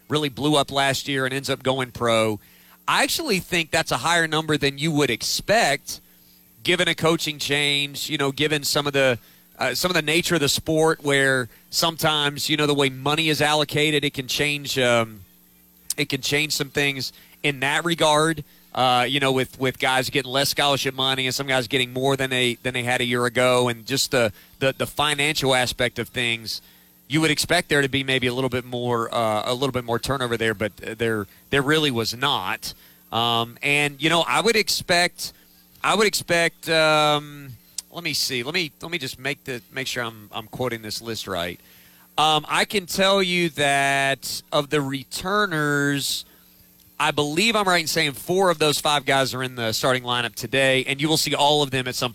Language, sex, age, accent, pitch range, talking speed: English, male, 30-49, American, 115-150 Hz, 205 wpm